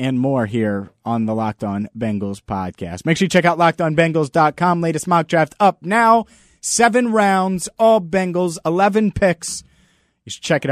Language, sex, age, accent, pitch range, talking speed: English, male, 30-49, American, 125-180 Hz, 170 wpm